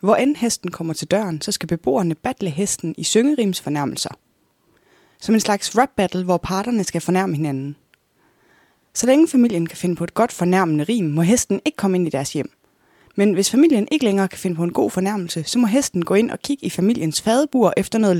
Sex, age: female, 20-39